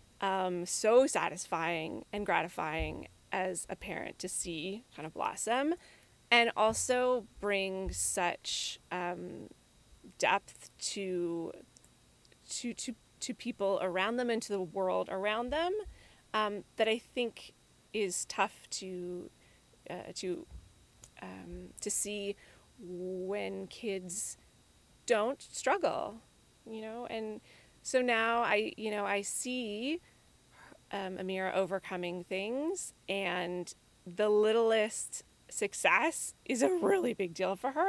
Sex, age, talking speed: female, 20-39, 115 wpm